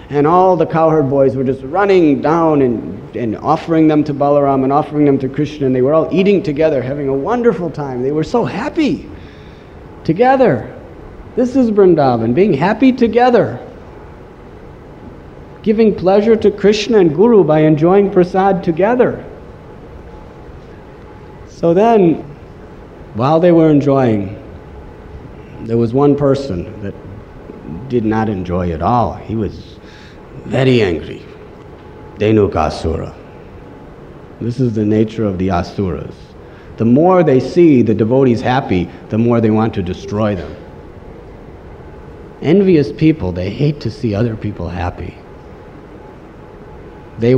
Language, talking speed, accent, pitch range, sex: English, 130 wpm, American, 100-155 Hz, male